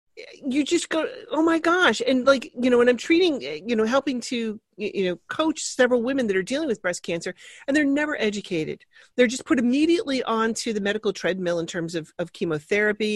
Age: 40-59